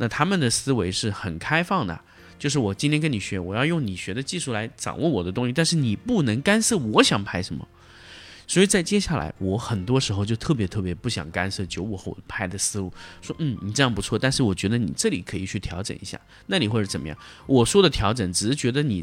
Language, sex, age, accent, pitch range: Chinese, male, 30-49, native, 100-160 Hz